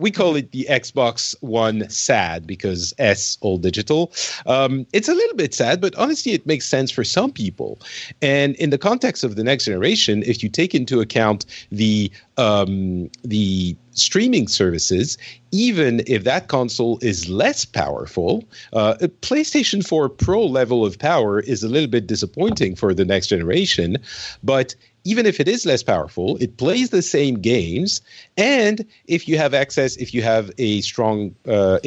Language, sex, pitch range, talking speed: English, male, 105-155 Hz, 170 wpm